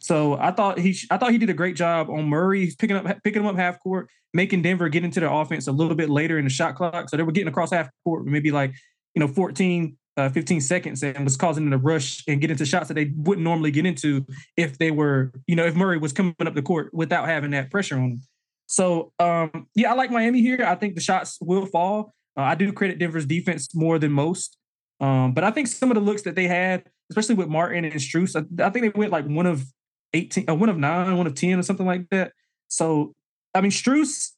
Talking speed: 255 wpm